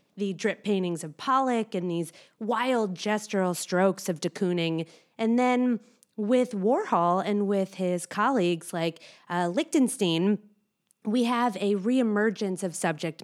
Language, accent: English, American